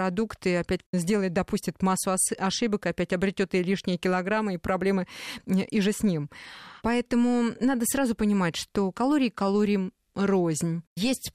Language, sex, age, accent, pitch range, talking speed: Russian, female, 20-39, native, 185-235 Hz, 140 wpm